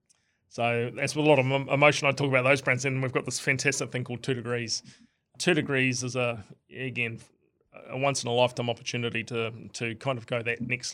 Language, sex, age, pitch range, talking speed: English, male, 20-39, 115-130 Hz, 215 wpm